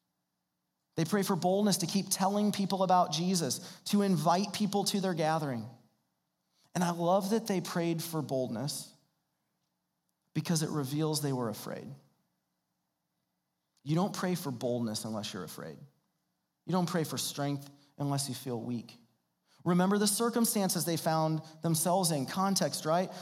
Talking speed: 145 wpm